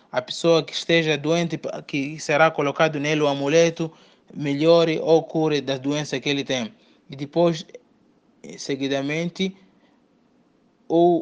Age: 20-39